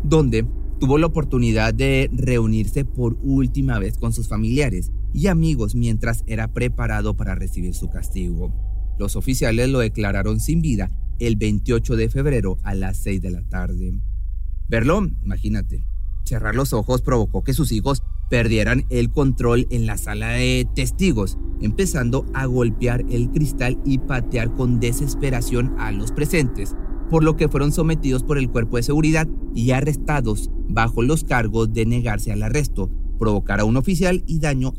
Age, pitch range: 30-49, 100-130 Hz